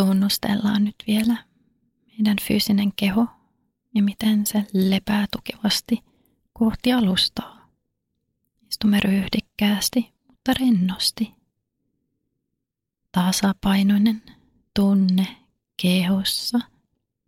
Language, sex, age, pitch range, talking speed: Finnish, female, 30-49, 180-225 Hz, 70 wpm